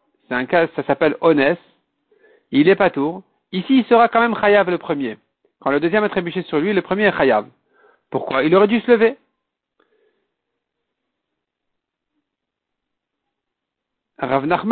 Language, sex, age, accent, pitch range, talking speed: French, male, 50-69, French, 170-235 Hz, 145 wpm